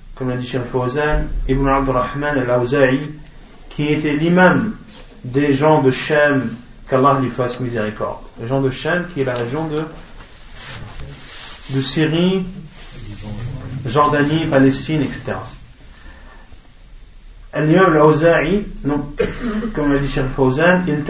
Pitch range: 125-150 Hz